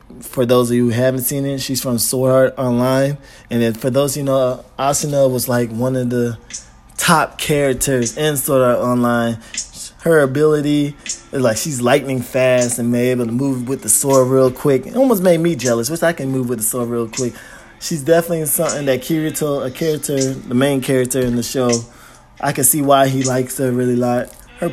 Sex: male